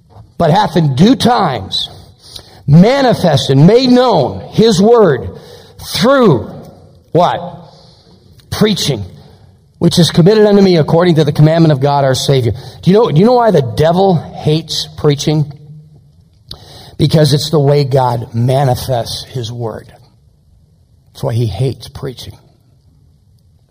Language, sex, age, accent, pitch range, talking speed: English, male, 50-69, American, 125-165 Hz, 125 wpm